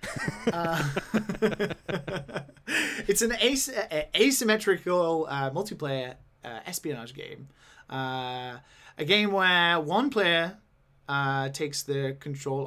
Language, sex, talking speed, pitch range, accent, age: English, male, 90 wpm, 135-185 Hz, Australian, 20-39